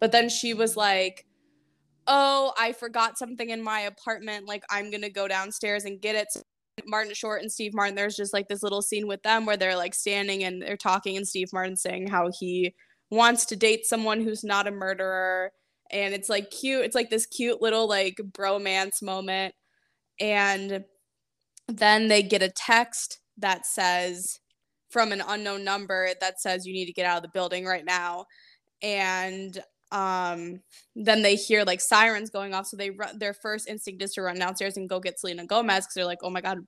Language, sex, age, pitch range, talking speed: English, female, 10-29, 190-215 Hz, 200 wpm